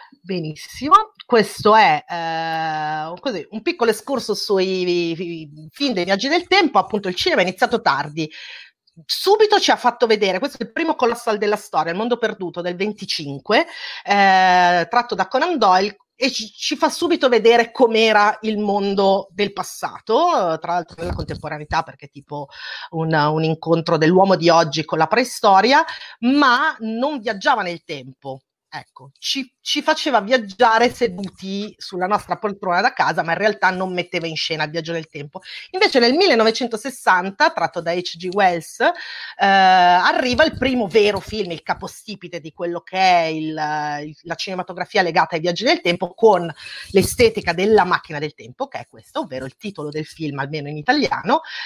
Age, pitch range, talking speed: 30-49, 165-240 Hz, 165 wpm